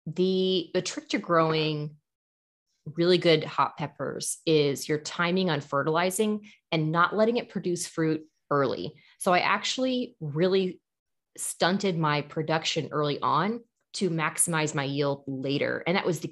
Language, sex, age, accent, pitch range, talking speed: English, female, 20-39, American, 145-185 Hz, 145 wpm